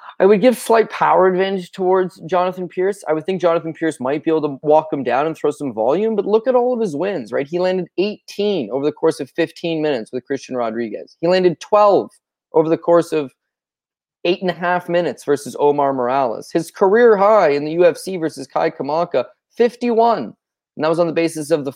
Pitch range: 140-190 Hz